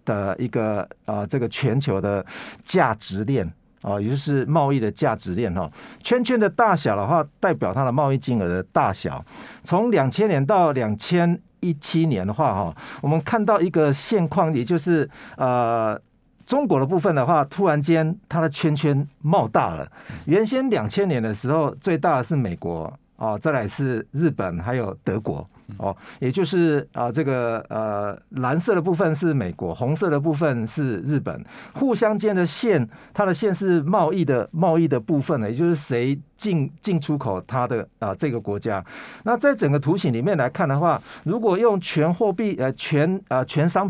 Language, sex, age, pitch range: Chinese, male, 50-69, 125-185 Hz